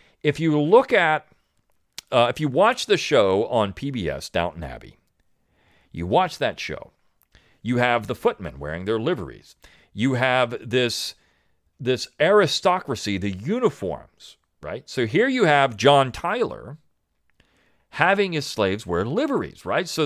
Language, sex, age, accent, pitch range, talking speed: English, male, 40-59, American, 105-150 Hz, 140 wpm